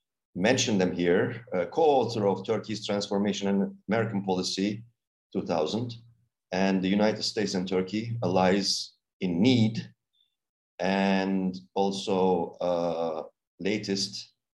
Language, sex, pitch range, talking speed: Turkish, male, 90-115 Hz, 105 wpm